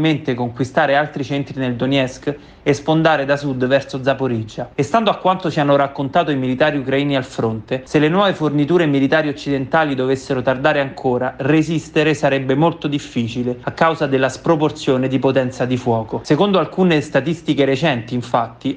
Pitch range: 130-155 Hz